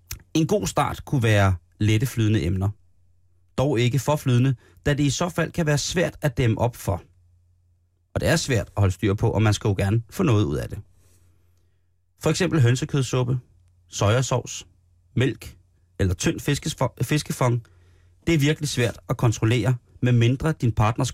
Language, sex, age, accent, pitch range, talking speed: Danish, male, 30-49, native, 90-135 Hz, 165 wpm